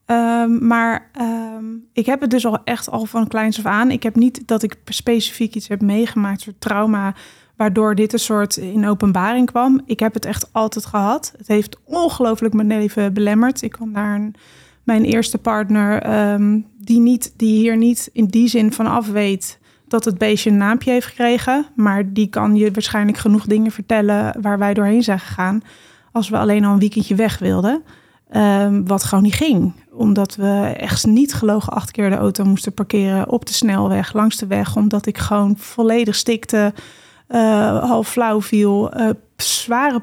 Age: 20-39